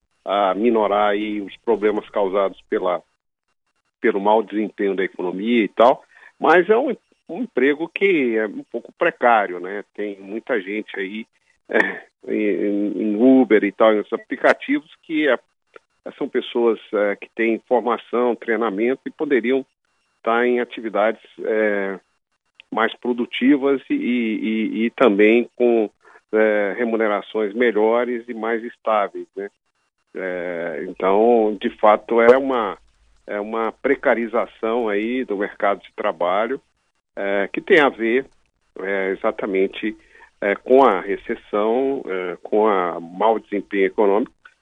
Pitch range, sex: 105-125 Hz, male